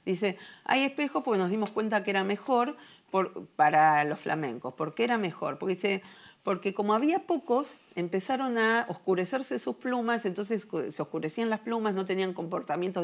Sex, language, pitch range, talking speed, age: female, Spanish, 175-230 Hz, 160 wpm, 40-59